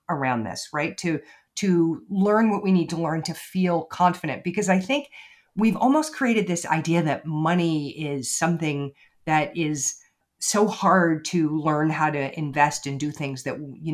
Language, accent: English, American